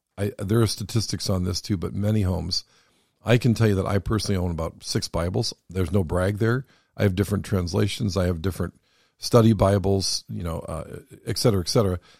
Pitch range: 95-115 Hz